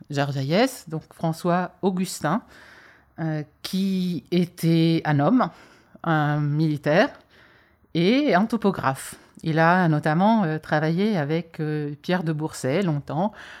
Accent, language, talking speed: French, French, 105 wpm